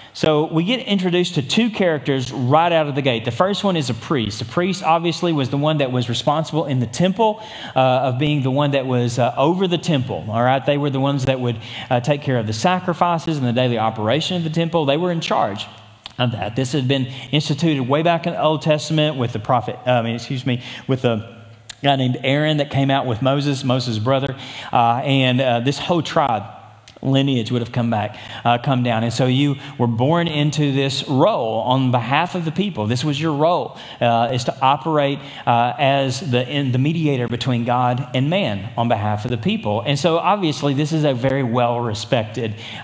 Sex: male